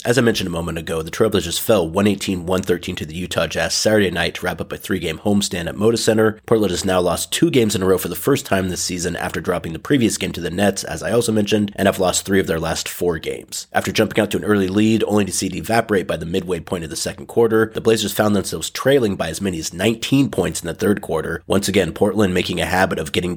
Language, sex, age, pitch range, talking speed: English, male, 30-49, 90-105 Hz, 265 wpm